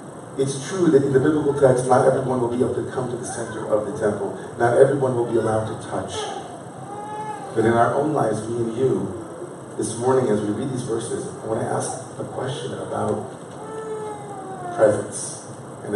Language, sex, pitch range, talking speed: English, male, 105-135 Hz, 190 wpm